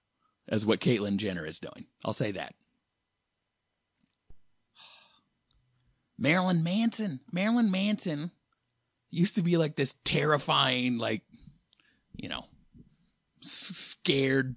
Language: English